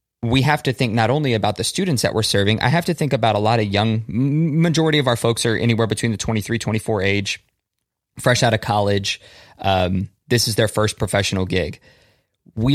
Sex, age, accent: male, 20-39, American